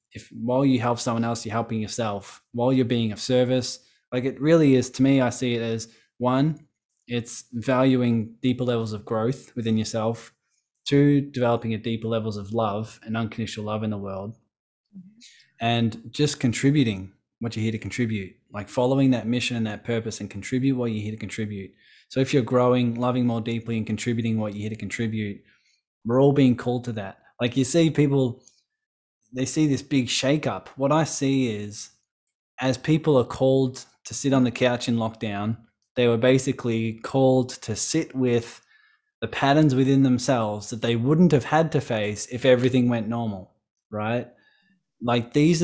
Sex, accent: male, Australian